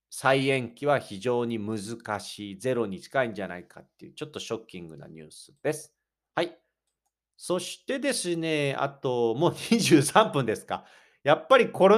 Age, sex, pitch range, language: 40-59, male, 110-170 Hz, Japanese